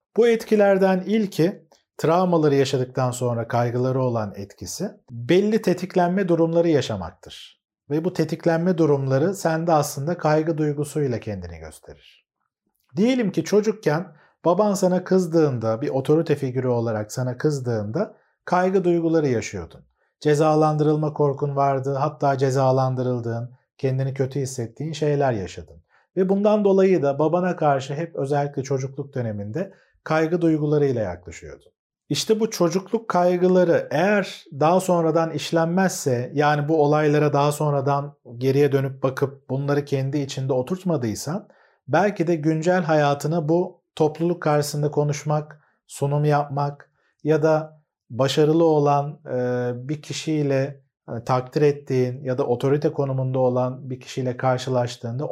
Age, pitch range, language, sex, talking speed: 40-59, 130-165 Hz, Turkish, male, 115 wpm